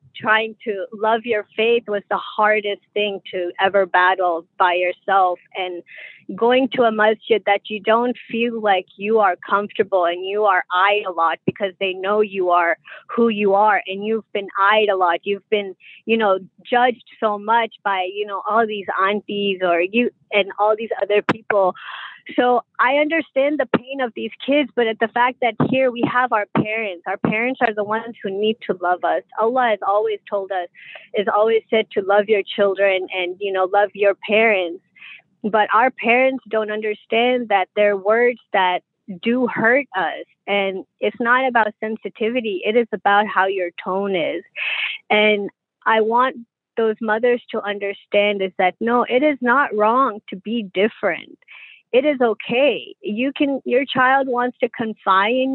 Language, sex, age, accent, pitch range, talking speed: English, female, 20-39, American, 195-240 Hz, 180 wpm